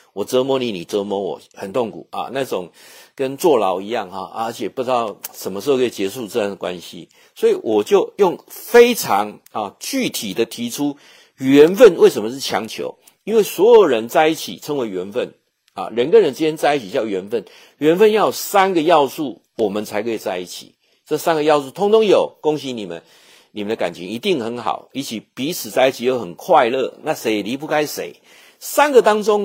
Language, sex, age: Chinese, male, 50-69